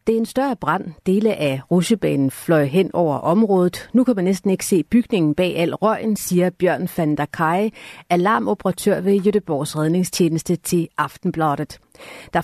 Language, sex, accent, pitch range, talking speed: Danish, female, native, 160-200 Hz, 160 wpm